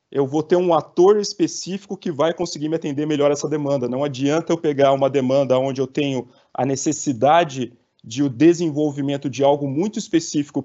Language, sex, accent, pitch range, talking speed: Portuguese, male, Brazilian, 135-155 Hz, 180 wpm